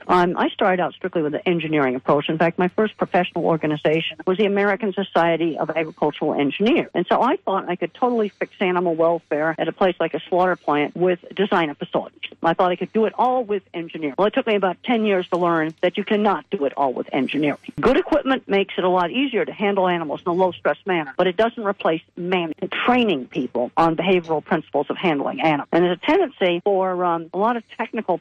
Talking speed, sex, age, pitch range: 225 wpm, female, 50-69, 165-200 Hz